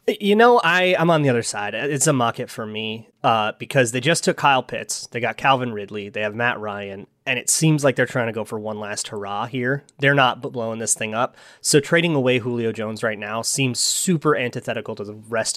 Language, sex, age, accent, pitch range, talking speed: English, male, 30-49, American, 115-140 Hz, 230 wpm